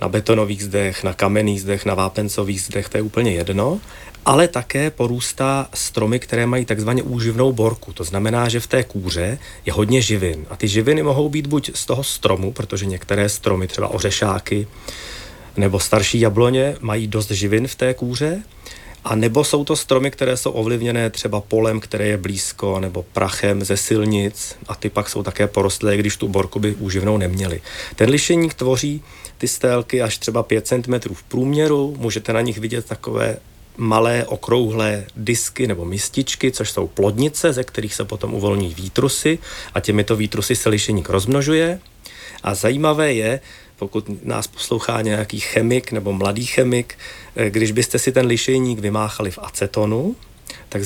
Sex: male